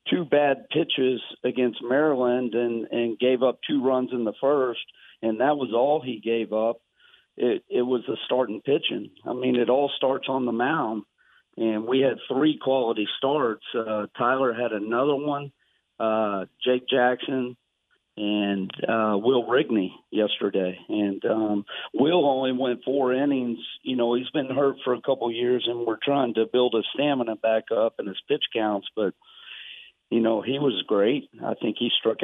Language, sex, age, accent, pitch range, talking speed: English, male, 50-69, American, 115-135 Hz, 175 wpm